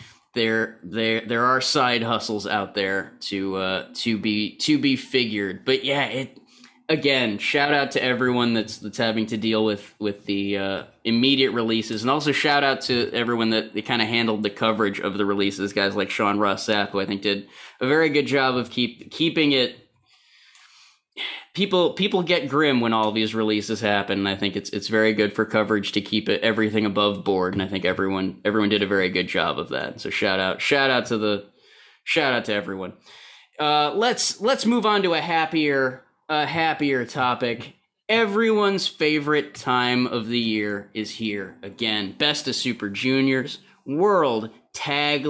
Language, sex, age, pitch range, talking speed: English, male, 20-39, 105-140 Hz, 185 wpm